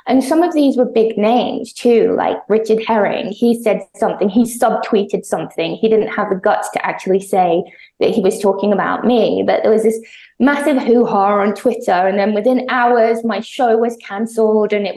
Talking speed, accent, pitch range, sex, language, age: 195 wpm, British, 210-250 Hz, female, English, 20-39